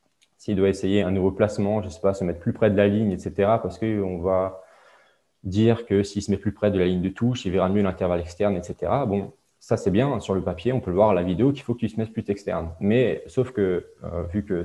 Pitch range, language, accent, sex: 90-110 Hz, French, French, male